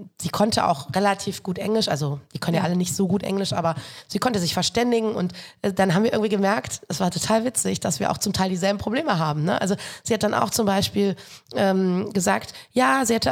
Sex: female